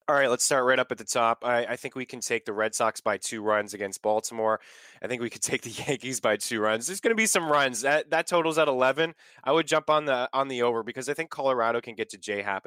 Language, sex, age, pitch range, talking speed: English, male, 20-39, 105-135 Hz, 285 wpm